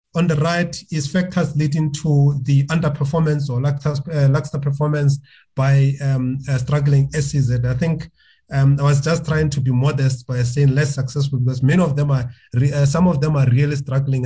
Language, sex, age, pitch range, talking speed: English, male, 30-49, 135-155 Hz, 200 wpm